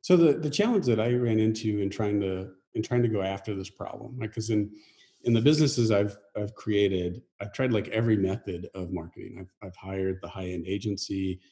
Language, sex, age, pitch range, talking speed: English, male, 40-59, 95-115 Hz, 220 wpm